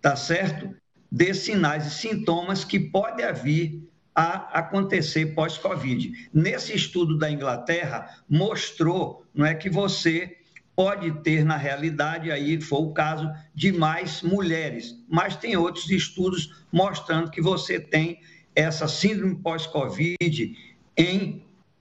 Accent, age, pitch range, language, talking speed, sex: Brazilian, 50-69, 155-190 Hz, Portuguese, 120 wpm, male